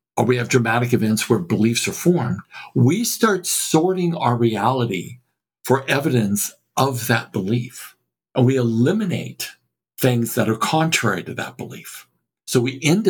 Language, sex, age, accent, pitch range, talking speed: English, male, 60-79, American, 115-150 Hz, 145 wpm